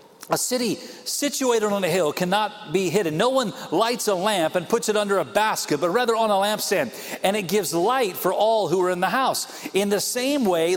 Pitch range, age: 195-245 Hz, 40-59